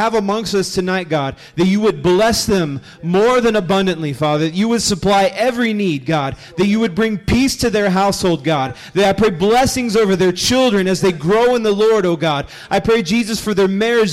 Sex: male